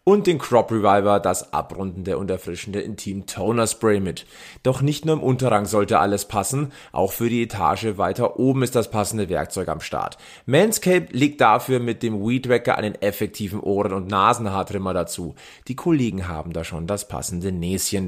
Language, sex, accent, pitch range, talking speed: German, male, German, 100-135 Hz, 175 wpm